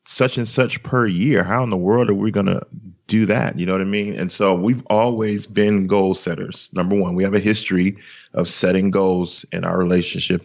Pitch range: 90-105 Hz